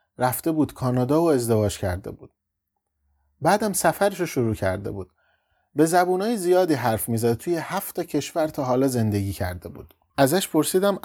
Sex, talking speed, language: male, 150 wpm, Persian